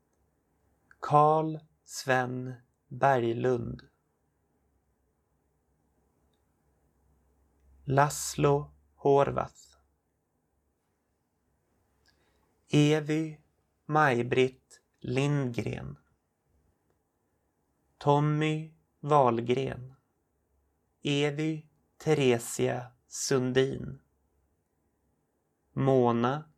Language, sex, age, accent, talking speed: Swedish, male, 30-49, native, 30 wpm